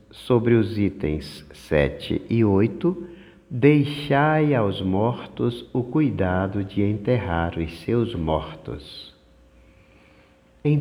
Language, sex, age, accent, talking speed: Portuguese, male, 60-79, Brazilian, 95 wpm